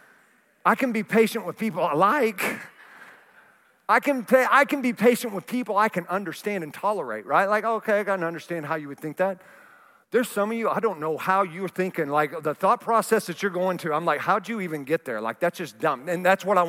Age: 50-69